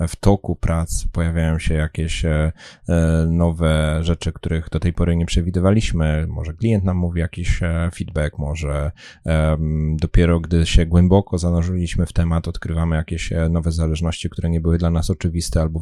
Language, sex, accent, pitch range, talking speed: Polish, male, native, 80-90 Hz, 150 wpm